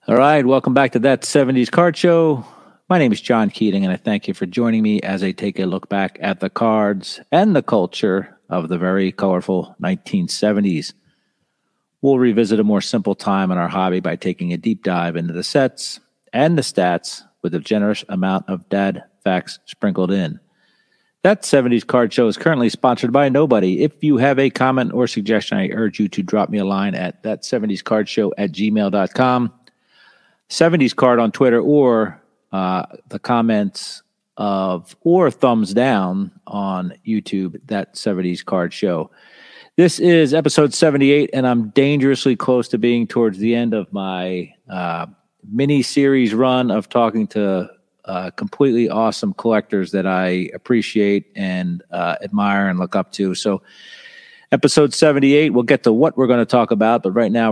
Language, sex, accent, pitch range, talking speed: English, male, American, 95-135 Hz, 170 wpm